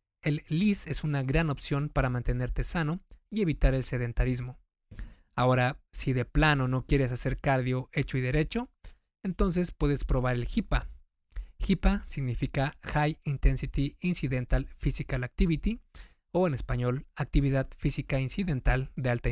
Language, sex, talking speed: Spanish, male, 135 wpm